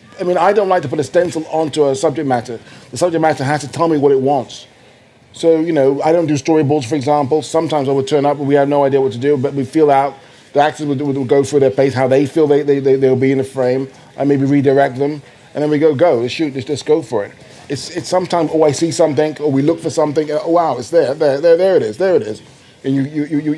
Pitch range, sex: 135-160 Hz, male